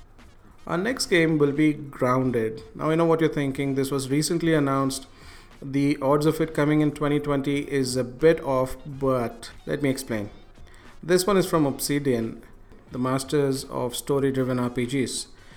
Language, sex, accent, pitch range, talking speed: English, male, Indian, 130-150 Hz, 160 wpm